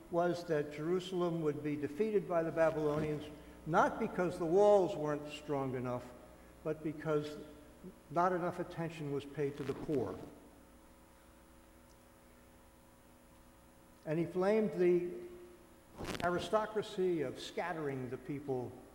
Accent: American